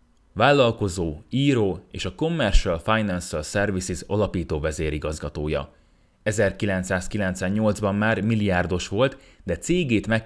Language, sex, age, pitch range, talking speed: Hungarian, male, 30-49, 85-110 Hz, 95 wpm